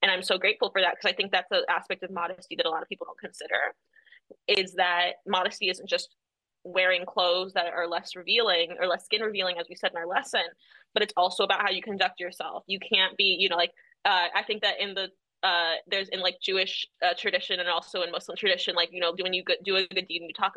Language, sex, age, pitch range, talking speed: English, female, 20-39, 185-285 Hz, 250 wpm